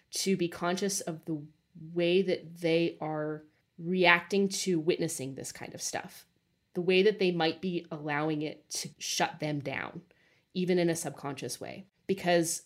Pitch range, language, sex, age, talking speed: 155-185 Hz, English, female, 30-49, 160 wpm